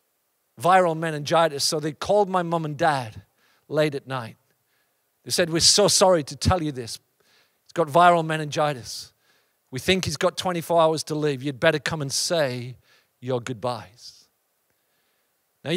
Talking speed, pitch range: 155 wpm, 130-170 Hz